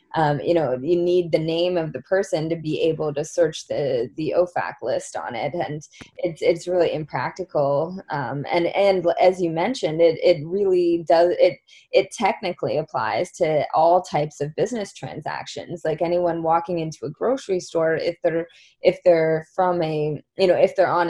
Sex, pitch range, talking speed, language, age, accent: female, 155-180 Hz, 180 wpm, English, 20-39, American